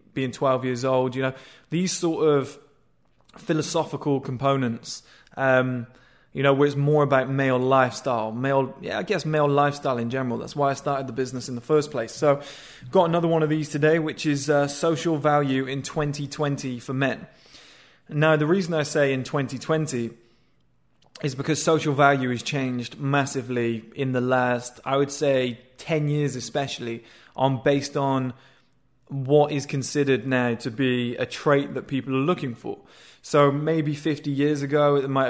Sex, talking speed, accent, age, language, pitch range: male, 170 wpm, British, 20-39, English, 130-150 Hz